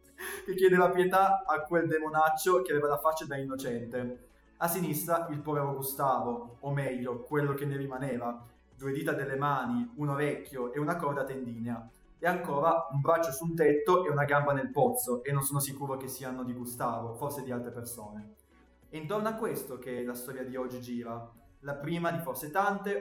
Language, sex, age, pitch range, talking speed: Italian, male, 20-39, 130-165 Hz, 190 wpm